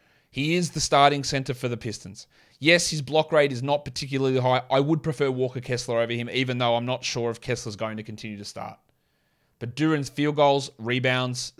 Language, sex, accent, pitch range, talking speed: English, male, Australian, 120-145 Hz, 205 wpm